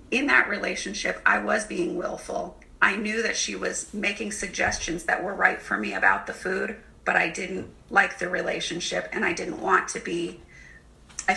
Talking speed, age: 185 wpm, 30-49